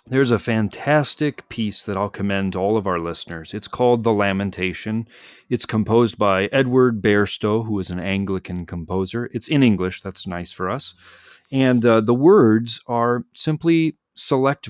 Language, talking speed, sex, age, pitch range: English, 160 wpm, male, 30-49, 90-125 Hz